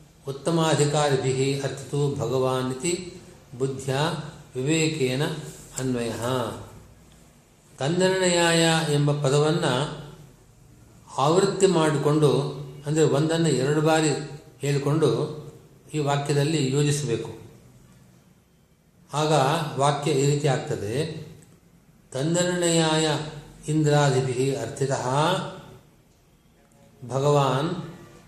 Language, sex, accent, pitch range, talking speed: Kannada, male, native, 135-155 Hz, 60 wpm